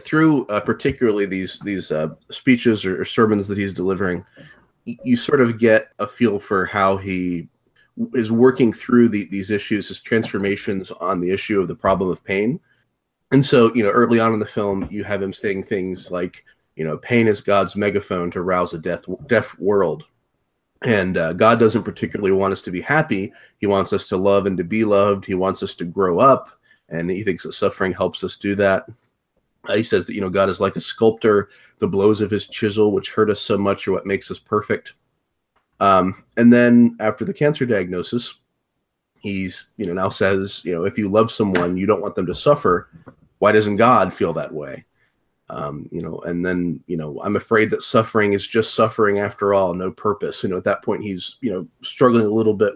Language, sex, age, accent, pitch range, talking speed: English, male, 30-49, American, 95-115 Hz, 215 wpm